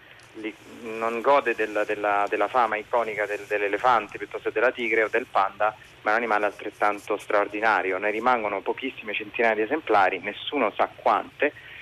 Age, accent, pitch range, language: 30-49, native, 100-115 Hz, Italian